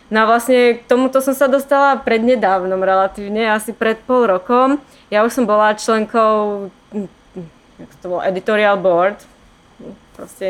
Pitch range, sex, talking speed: 195-225 Hz, female, 150 wpm